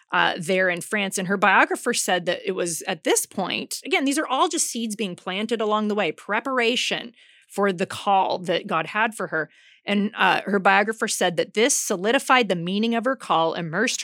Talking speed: 205 wpm